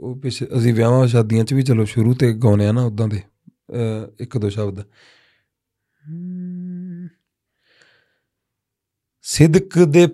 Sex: male